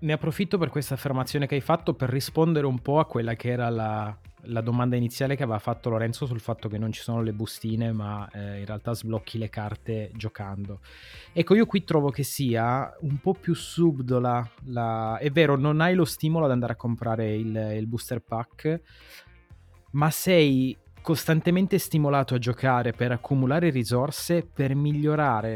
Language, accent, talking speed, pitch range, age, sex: Italian, native, 175 wpm, 110-145 Hz, 20-39, male